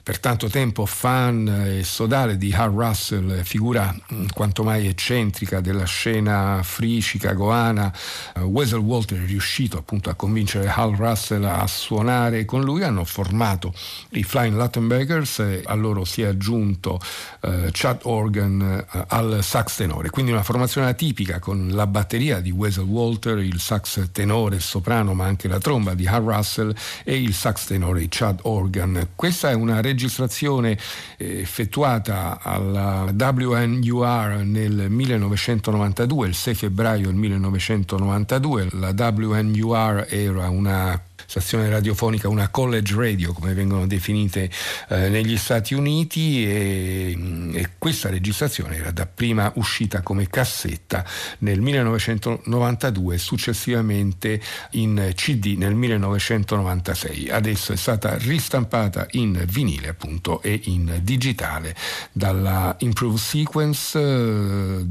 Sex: male